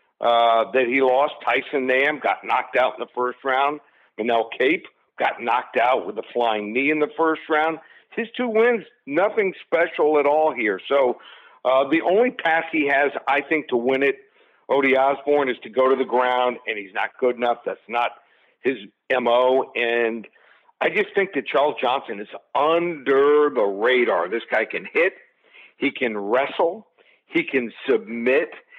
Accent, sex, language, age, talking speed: American, male, English, 60-79, 175 wpm